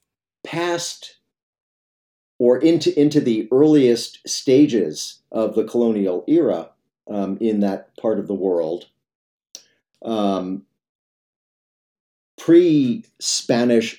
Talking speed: 85 wpm